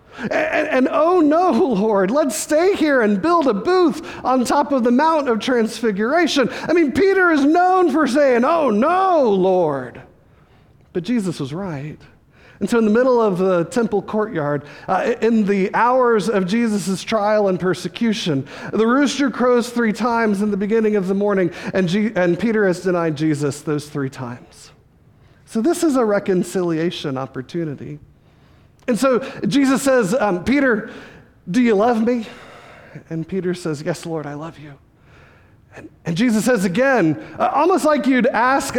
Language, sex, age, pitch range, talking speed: English, male, 40-59, 180-260 Hz, 165 wpm